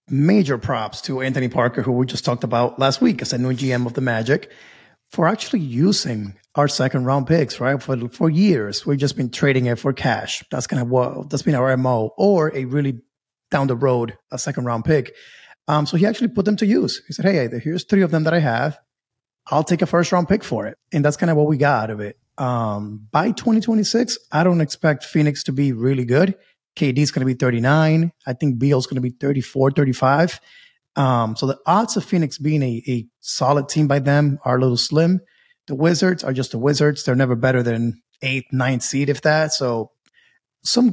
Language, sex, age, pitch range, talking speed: English, male, 30-49, 130-165 Hz, 220 wpm